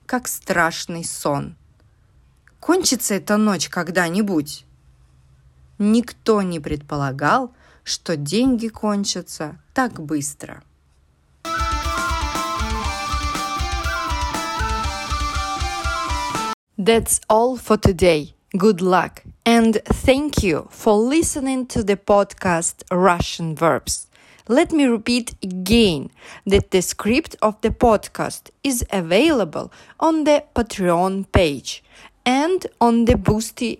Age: 30-49